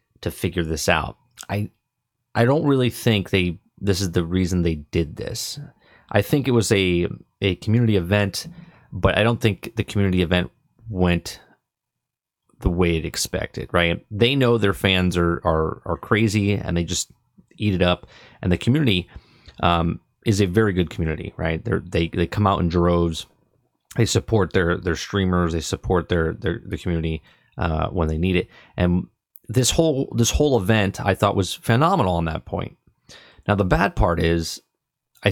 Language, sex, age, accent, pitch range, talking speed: English, male, 30-49, American, 85-115 Hz, 175 wpm